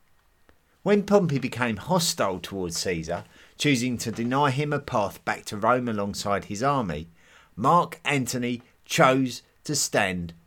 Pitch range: 90-145 Hz